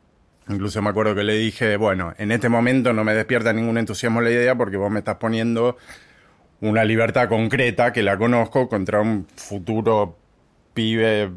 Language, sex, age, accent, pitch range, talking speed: Spanish, male, 20-39, Argentinian, 100-115 Hz, 170 wpm